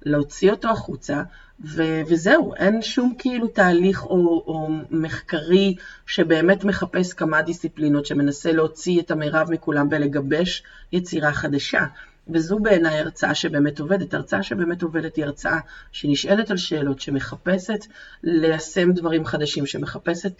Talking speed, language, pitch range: 125 wpm, Hebrew, 150-185 Hz